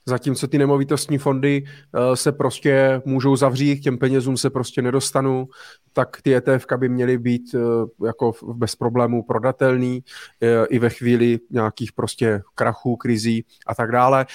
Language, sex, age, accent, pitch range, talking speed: Czech, male, 30-49, native, 125-150 Hz, 145 wpm